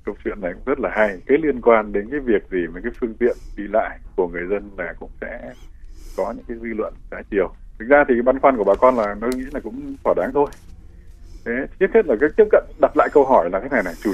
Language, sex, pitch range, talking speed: Vietnamese, male, 105-150 Hz, 280 wpm